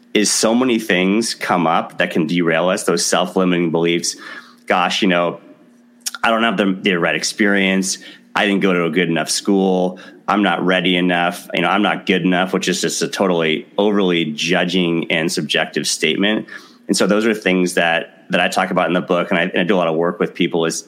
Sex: male